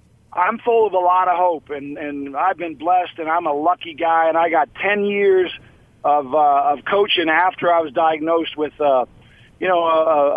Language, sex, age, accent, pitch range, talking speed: English, male, 50-69, American, 145-180 Hz, 205 wpm